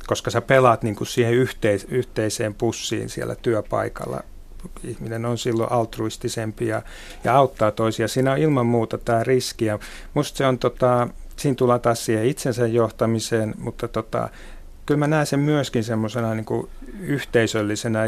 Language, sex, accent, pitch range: Finnish, male, native, 115-125 Hz